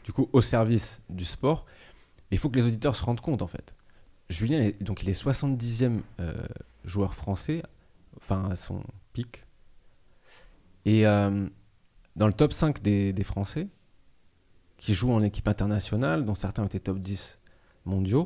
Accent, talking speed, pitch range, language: French, 165 wpm, 100-130 Hz, French